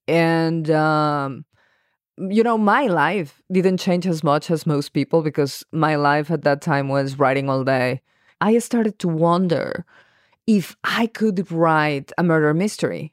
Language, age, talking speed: English, 20-39, 155 wpm